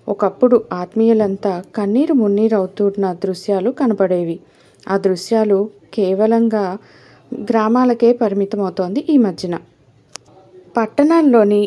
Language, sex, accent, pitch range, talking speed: Telugu, female, native, 190-230 Hz, 75 wpm